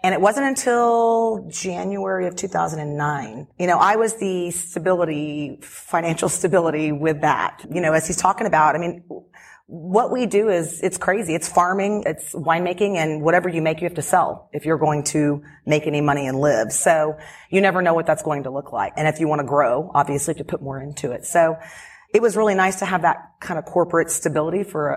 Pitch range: 155-195 Hz